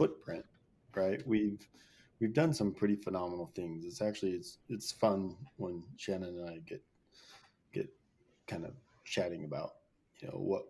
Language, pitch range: English, 95-120 Hz